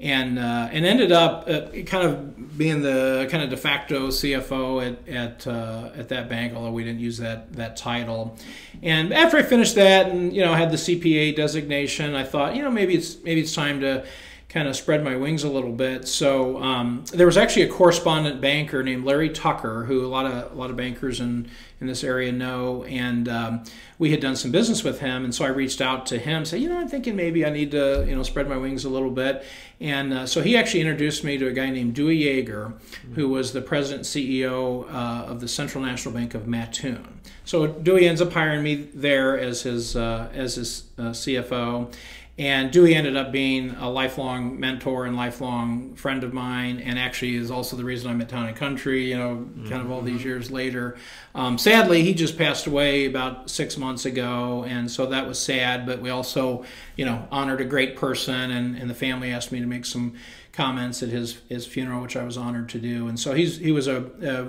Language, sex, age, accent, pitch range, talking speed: English, male, 40-59, American, 125-145 Hz, 220 wpm